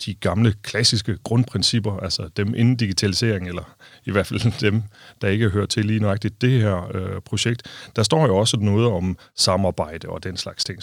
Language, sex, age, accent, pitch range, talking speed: Danish, male, 30-49, native, 100-125 Hz, 185 wpm